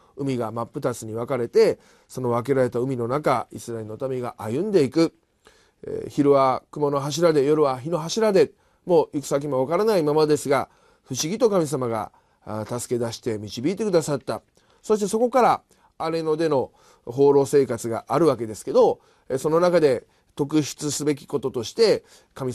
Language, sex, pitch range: Japanese, male, 120-180 Hz